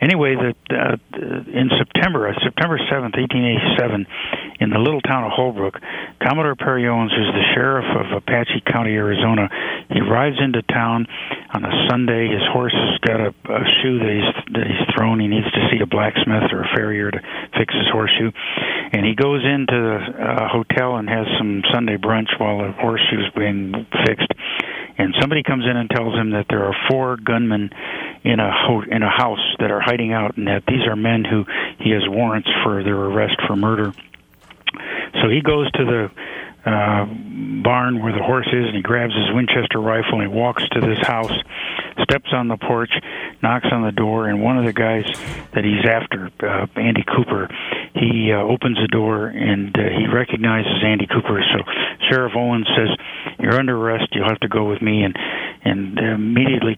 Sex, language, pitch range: male, English, 105-125 Hz